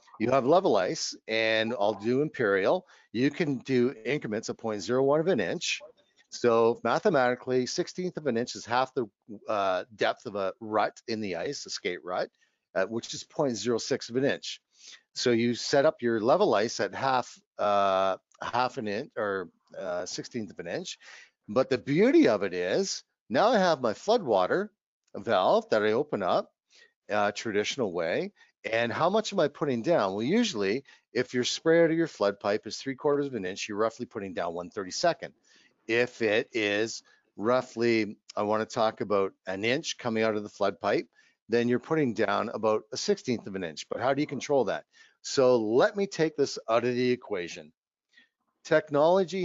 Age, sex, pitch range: 50-69, male, 110-150 Hz